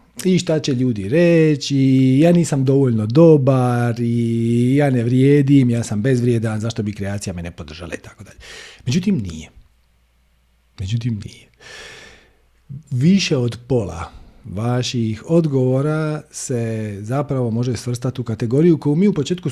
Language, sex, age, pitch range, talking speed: Croatian, male, 40-59, 110-155 Hz, 130 wpm